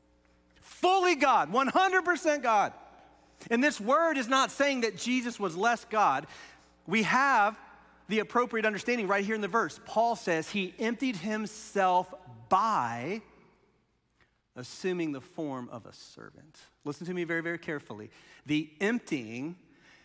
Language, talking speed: English, 135 wpm